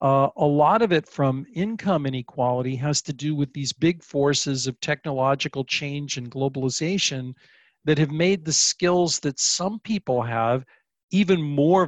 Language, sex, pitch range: English, male, 125-160 Hz